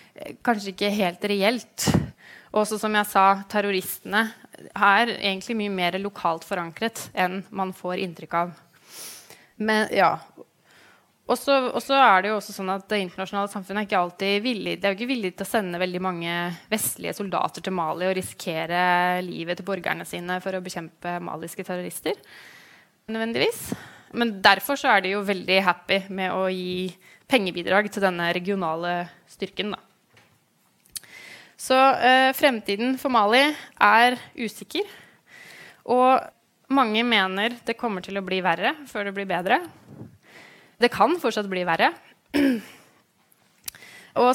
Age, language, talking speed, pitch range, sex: 20-39, English, 145 wpm, 185-230 Hz, female